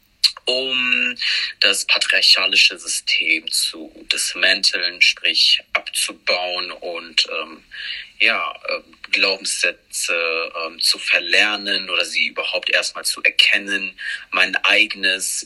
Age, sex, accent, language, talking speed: 30-49, male, German, German, 90 wpm